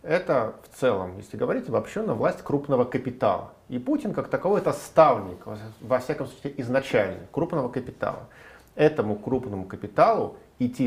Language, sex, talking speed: Russian, male, 145 wpm